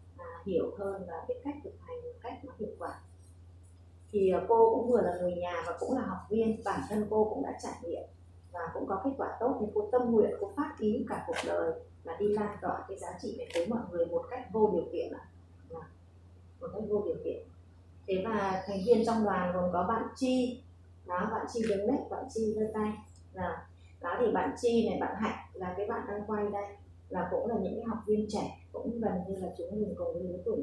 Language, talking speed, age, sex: Vietnamese, 230 wpm, 20-39, female